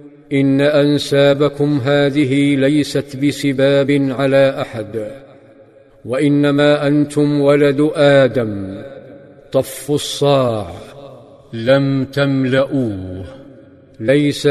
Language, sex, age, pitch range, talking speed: Arabic, male, 50-69, 135-145 Hz, 65 wpm